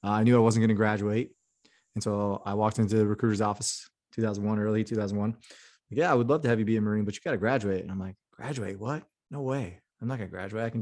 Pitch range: 105-120 Hz